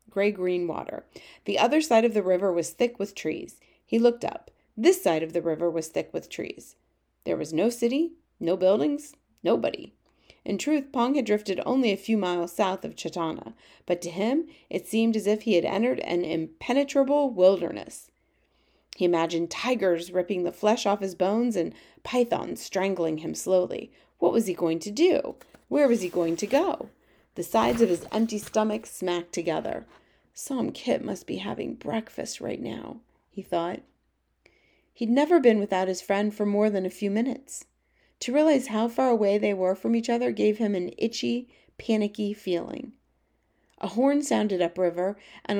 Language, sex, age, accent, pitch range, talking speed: English, female, 30-49, American, 180-235 Hz, 175 wpm